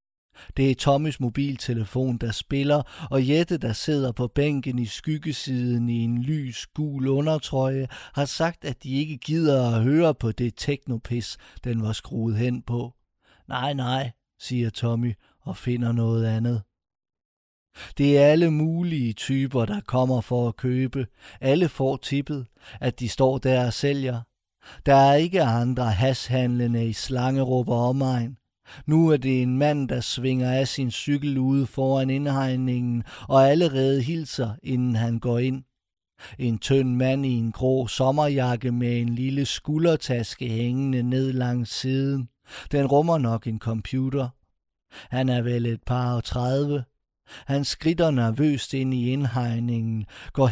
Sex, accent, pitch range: male, native, 120-140 Hz